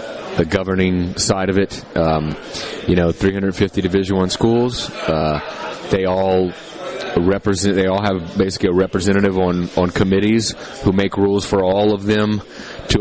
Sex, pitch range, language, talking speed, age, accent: male, 90-100 Hz, English, 150 wpm, 30-49, American